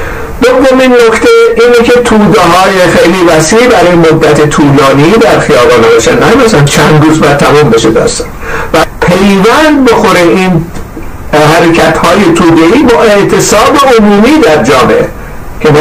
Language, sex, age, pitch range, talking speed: Persian, male, 60-79, 160-230 Hz, 135 wpm